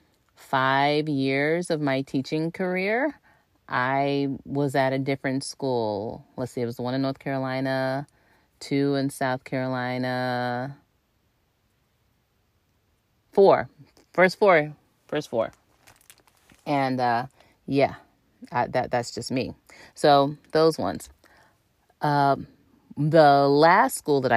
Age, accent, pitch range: 30-49, American, 130-170 Hz